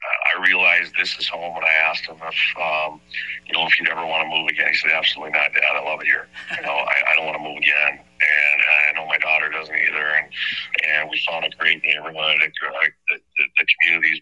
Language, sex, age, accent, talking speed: English, male, 40-59, American, 240 wpm